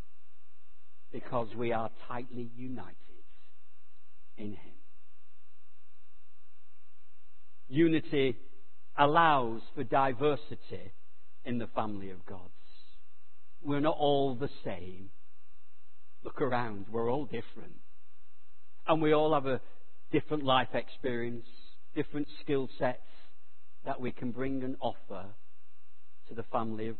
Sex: male